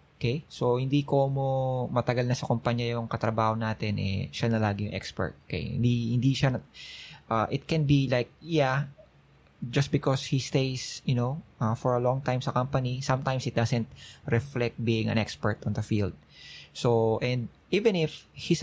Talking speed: 180 wpm